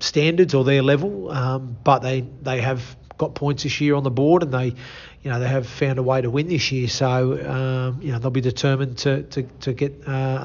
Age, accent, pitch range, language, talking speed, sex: 40-59, Australian, 130-145 Hz, English, 235 wpm, male